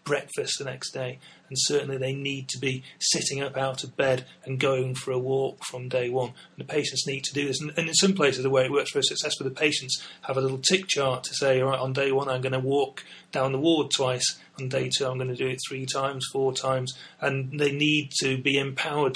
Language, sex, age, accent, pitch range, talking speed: English, male, 30-49, British, 130-145 Hz, 265 wpm